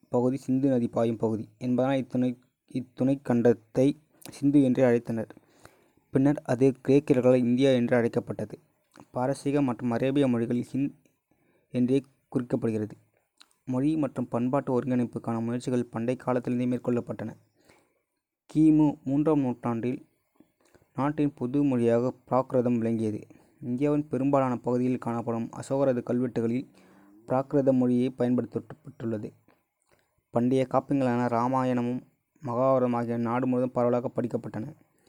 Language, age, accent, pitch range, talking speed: Tamil, 20-39, native, 120-135 Hz, 95 wpm